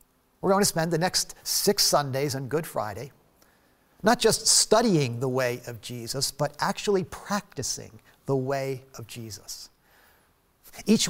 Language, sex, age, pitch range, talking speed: English, male, 50-69, 135-180 Hz, 140 wpm